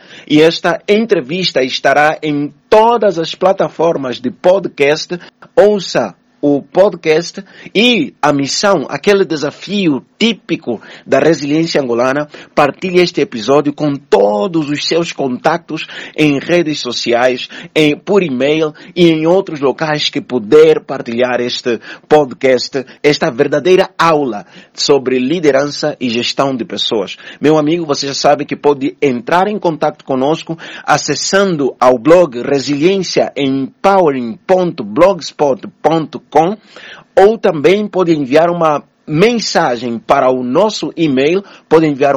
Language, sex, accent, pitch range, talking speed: Portuguese, male, Brazilian, 135-170 Hz, 115 wpm